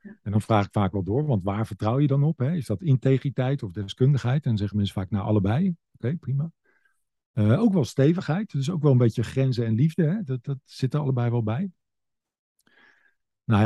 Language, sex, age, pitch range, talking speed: Dutch, male, 50-69, 110-145 Hz, 220 wpm